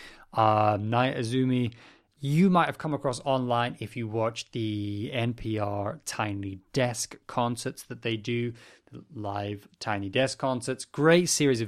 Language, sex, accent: English, male, British